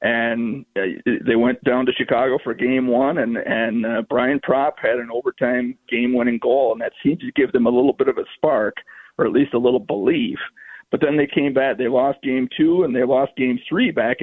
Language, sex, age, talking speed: English, male, 50-69, 220 wpm